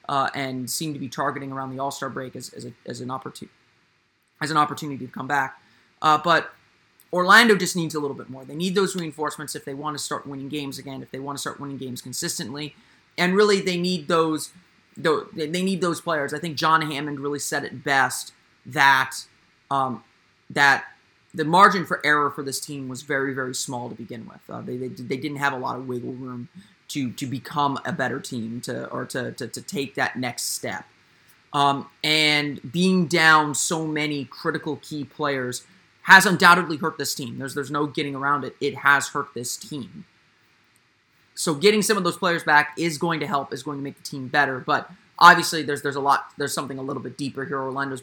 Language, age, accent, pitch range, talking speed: English, 30-49, American, 135-160 Hz, 210 wpm